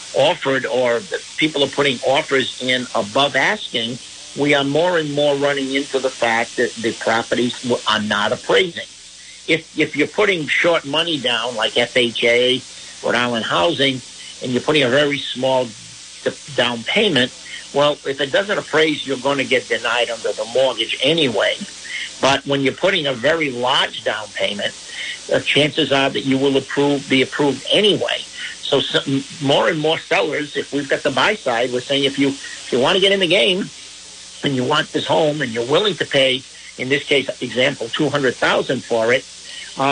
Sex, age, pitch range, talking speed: male, 60-79, 125-150 Hz, 180 wpm